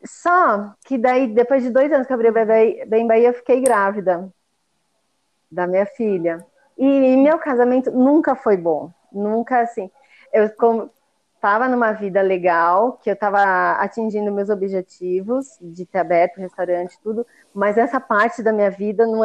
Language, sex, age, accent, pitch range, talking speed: Portuguese, female, 30-49, Brazilian, 205-270 Hz, 160 wpm